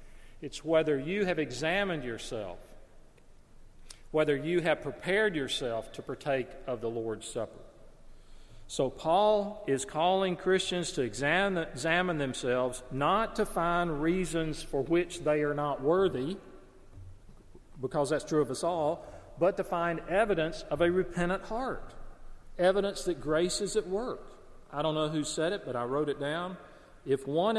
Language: English